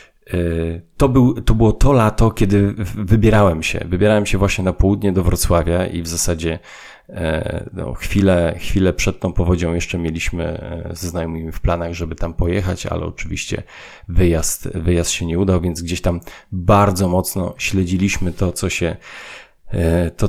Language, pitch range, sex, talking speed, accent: Polish, 85-105 Hz, male, 150 wpm, native